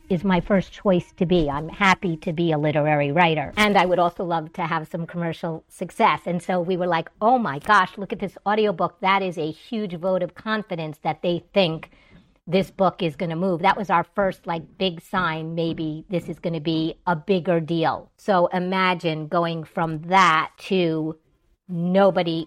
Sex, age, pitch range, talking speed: female, 50-69, 165-195 Hz, 200 wpm